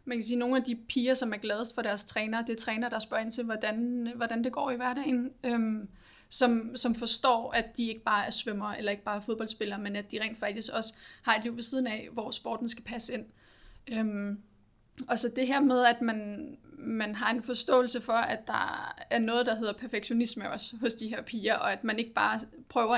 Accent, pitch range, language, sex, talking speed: native, 220-245 Hz, Danish, female, 230 wpm